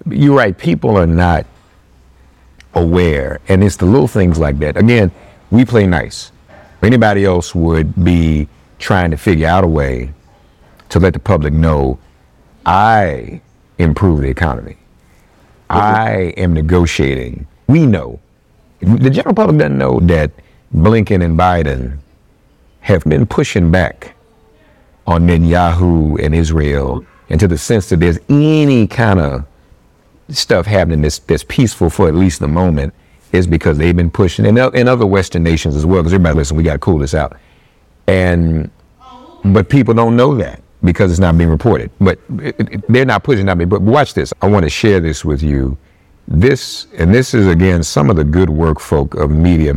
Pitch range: 75-100 Hz